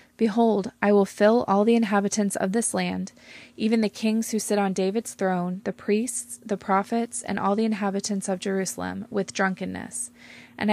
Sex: female